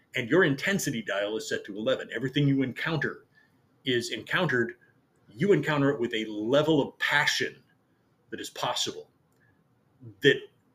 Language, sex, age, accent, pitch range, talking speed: English, male, 40-59, American, 120-170 Hz, 140 wpm